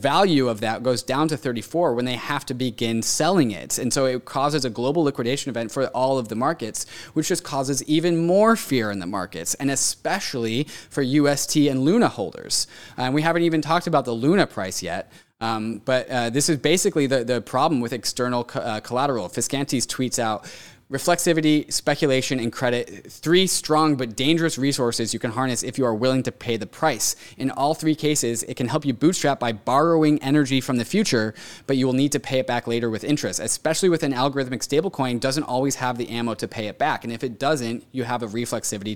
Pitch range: 120-150 Hz